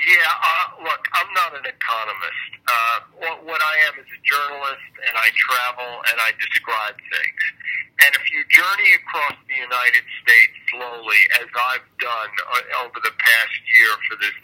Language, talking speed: English, 170 wpm